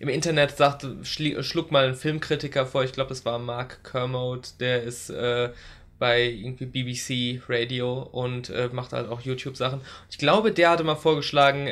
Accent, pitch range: German, 125-155 Hz